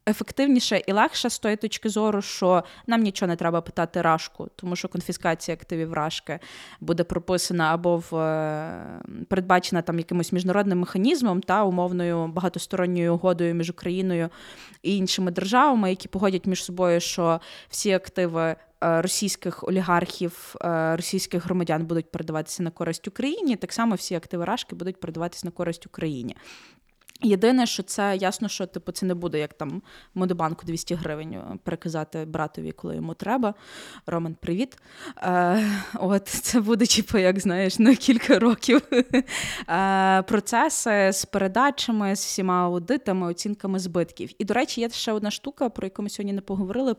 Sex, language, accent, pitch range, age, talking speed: female, Ukrainian, native, 170-205 Hz, 20-39, 150 wpm